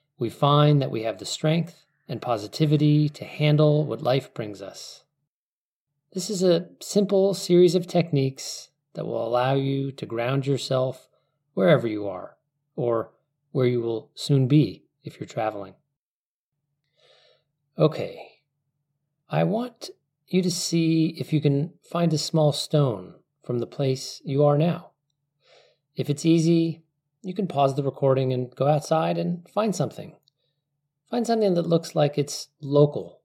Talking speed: 145 wpm